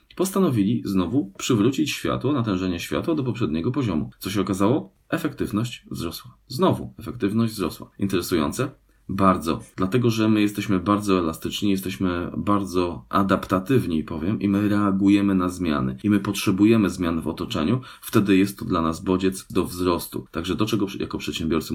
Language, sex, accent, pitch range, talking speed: Polish, male, native, 80-100 Hz, 145 wpm